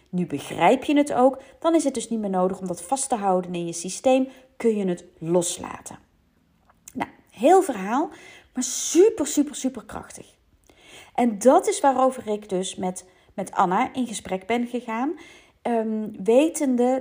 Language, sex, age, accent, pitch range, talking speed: Dutch, female, 40-59, Dutch, 180-260 Hz, 160 wpm